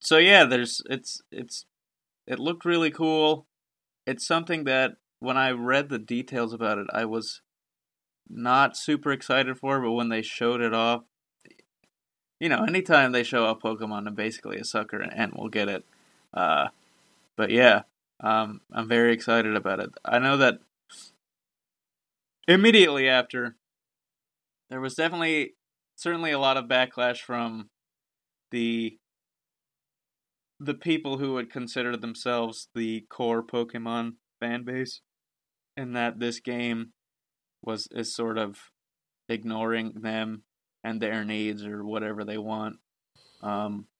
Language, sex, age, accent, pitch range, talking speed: English, male, 20-39, American, 110-135 Hz, 135 wpm